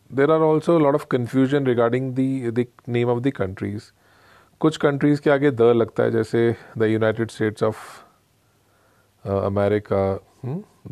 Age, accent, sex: 40-59, Indian, male